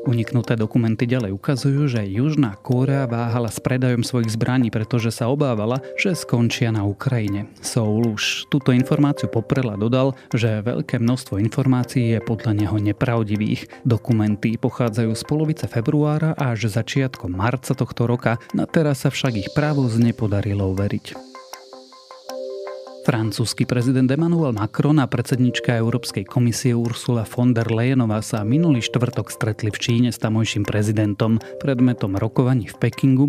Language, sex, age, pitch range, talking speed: Slovak, male, 30-49, 110-135 Hz, 135 wpm